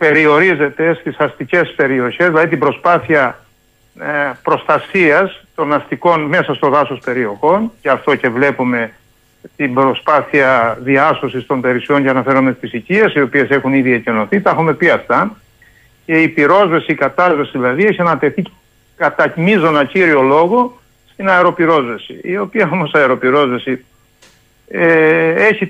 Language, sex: Greek, male